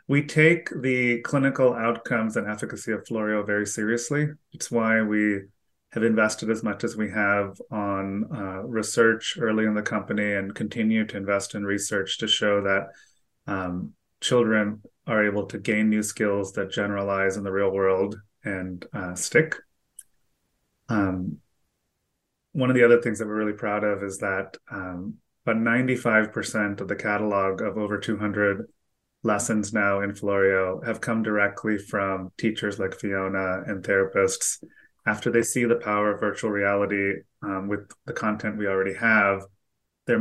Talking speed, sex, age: 160 wpm, male, 30-49